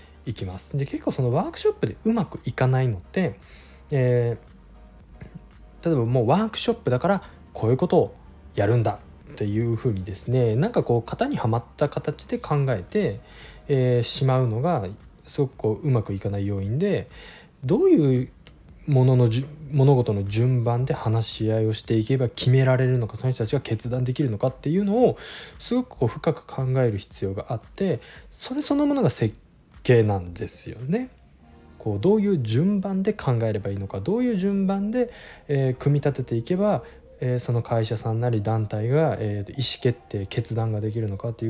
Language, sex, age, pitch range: Japanese, male, 20-39, 110-155 Hz